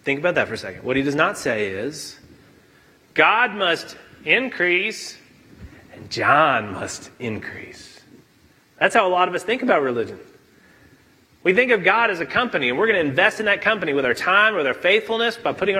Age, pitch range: 30-49, 165-225 Hz